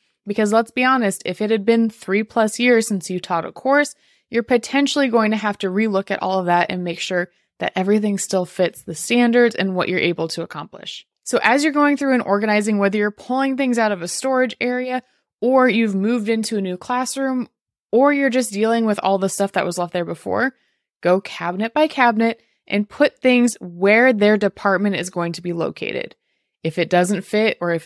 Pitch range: 185-240 Hz